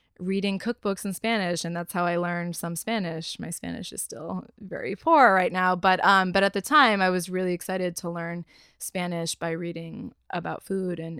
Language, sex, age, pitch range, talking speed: English, female, 20-39, 170-200 Hz, 200 wpm